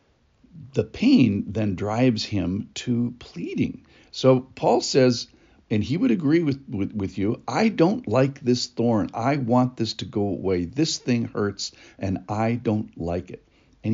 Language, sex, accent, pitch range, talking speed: English, male, American, 95-125 Hz, 165 wpm